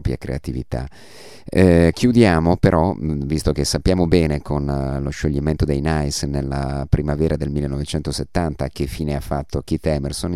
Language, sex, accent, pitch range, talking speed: Italian, male, native, 70-85 Hz, 135 wpm